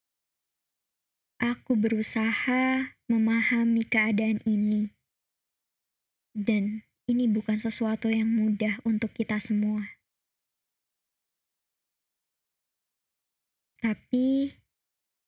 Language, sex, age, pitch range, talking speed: Indonesian, male, 20-39, 215-235 Hz, 60 wpm